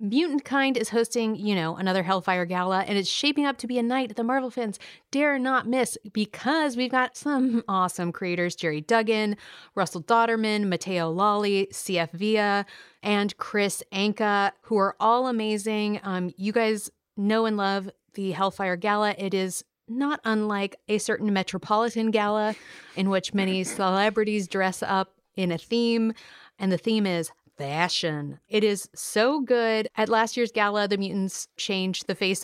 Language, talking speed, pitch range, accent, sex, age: English, 165 wpm, 190-240 Hz, American, female, 30-49